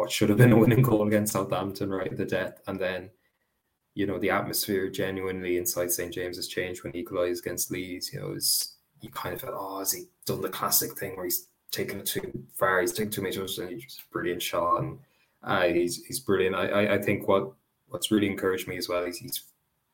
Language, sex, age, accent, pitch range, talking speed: English, male, 20-39, Irish, 90-100 Hz, 230 wpm